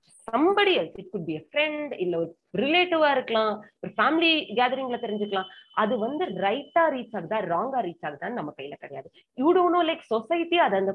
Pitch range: 190-300 Hz